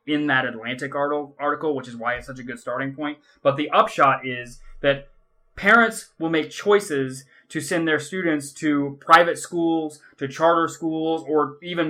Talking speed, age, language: 170 wpm, 20-39, English